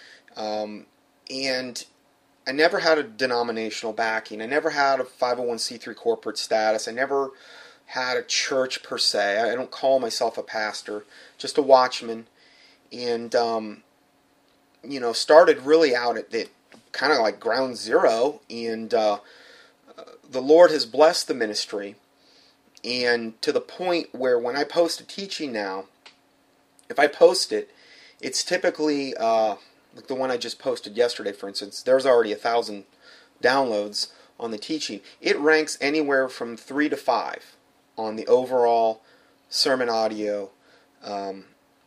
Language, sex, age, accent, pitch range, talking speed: English, male, 30-49, American, 110-150 Hz, 145 wpm